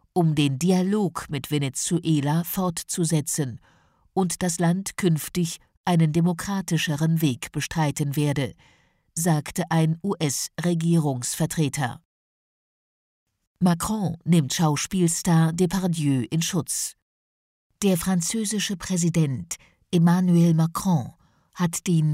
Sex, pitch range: female, 150-180 Hz